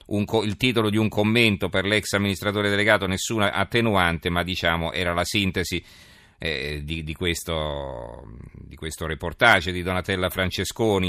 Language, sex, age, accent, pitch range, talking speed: Italian, male, 40-59, native, 90-110 Hz, 130 wpm